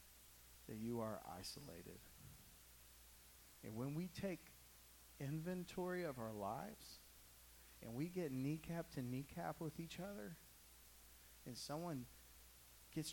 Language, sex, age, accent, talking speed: English, male, 40-59, American, 110 wpm